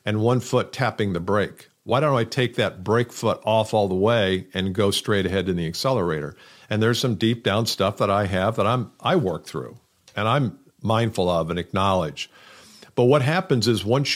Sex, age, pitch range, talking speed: male, 50-69, 100-130 Hz, 205 wpm